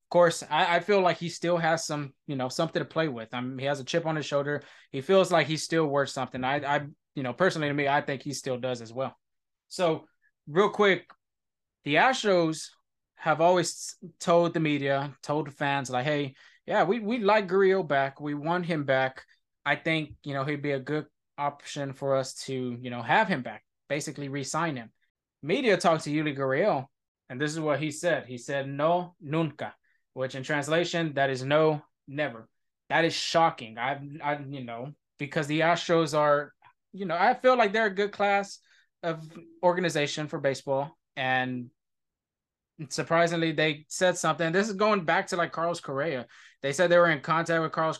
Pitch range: 140-170 Hz